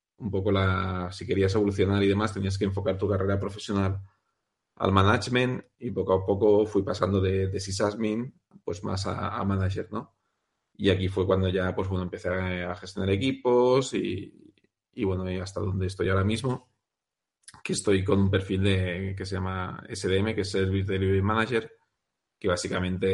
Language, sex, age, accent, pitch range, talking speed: Spanish, male, 30-49, Spanish, 95-105 Hz, 180 wpm